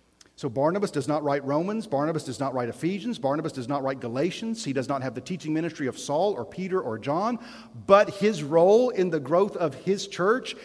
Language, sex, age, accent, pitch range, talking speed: English, male, 40-59, American, 120-170 Hz, 215 wpm